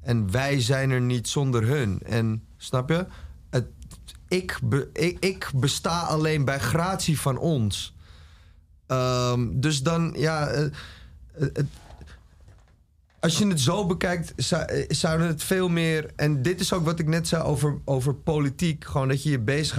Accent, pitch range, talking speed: Dutch, 120-160 Hz, 145 wpm